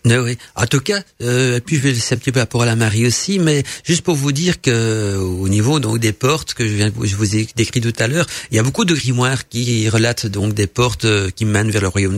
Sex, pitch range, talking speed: male, 110-135 Hz, 285 wpm